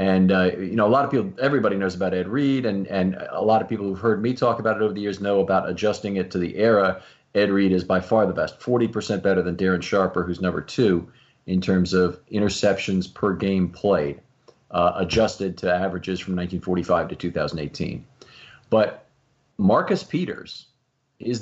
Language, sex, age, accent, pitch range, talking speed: English, male, 40-59, American, 95-120 Hz, 195 wpm